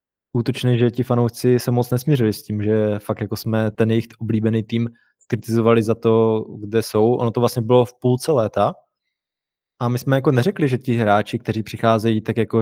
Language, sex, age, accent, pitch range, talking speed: Czech, male, 20-39, native, 115-125 Hz, 195 wpm